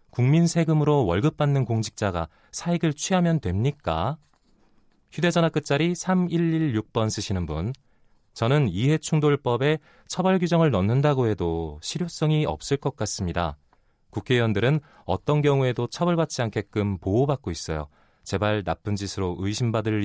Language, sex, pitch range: Korean, male, 95-145 Hz